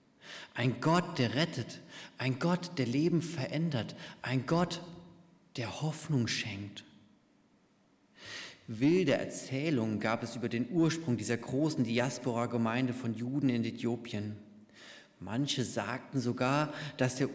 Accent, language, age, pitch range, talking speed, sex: German, German, 40-59, 115-140 Hz, 115 wpm, male